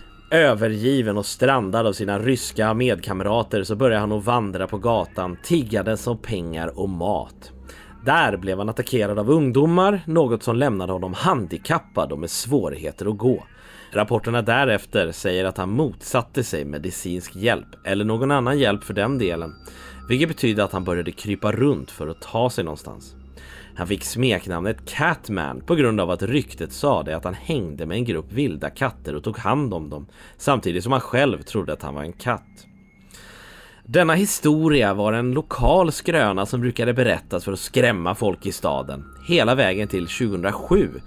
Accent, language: Swedish, English